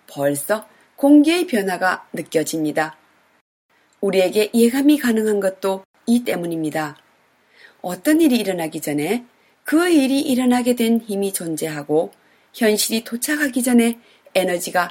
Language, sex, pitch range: Korean, female, 180-255 Hz